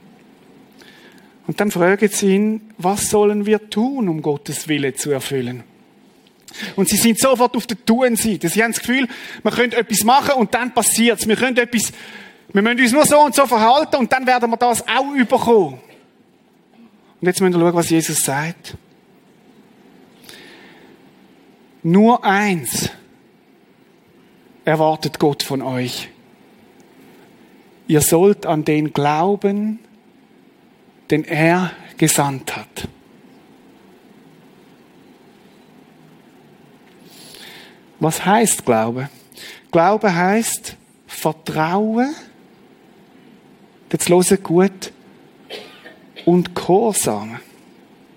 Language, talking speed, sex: German, 105 wpm, male